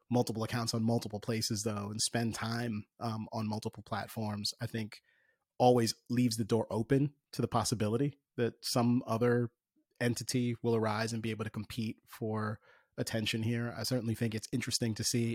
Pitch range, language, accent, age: 110-120 Hz, English, American, 30-49